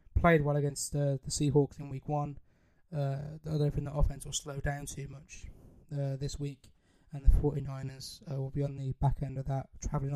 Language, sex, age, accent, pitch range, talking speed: English, male, 20-39, British, 140-155 Hz, 215 wpm